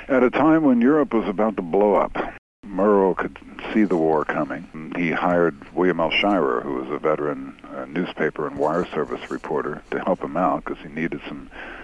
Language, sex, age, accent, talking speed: English, male, 60-79, American, 200 wpm